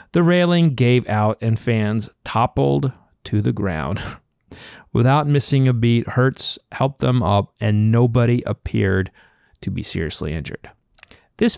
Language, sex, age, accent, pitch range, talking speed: English, male, 30-49, American, 105-150 Hz, 135 wpm